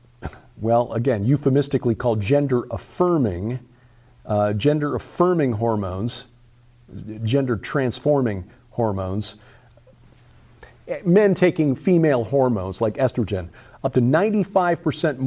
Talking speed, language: 85 wpm, English